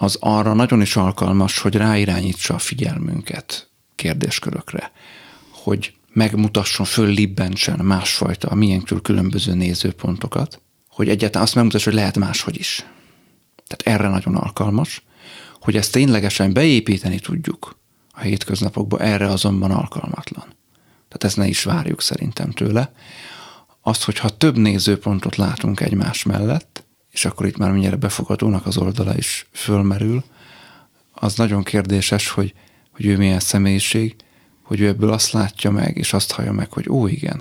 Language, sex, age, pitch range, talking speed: Hungarian, male, 30-49, 100-110 Hz, 135 wpm